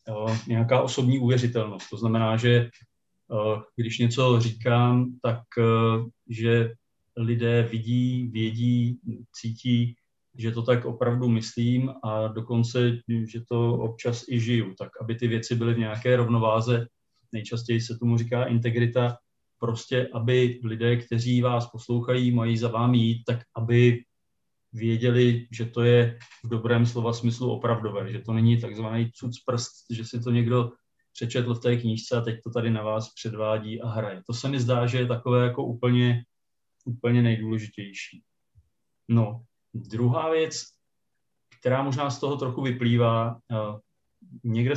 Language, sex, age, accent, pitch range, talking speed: Czech, male, 40-59, native, 115-125 Hz, 140 wpm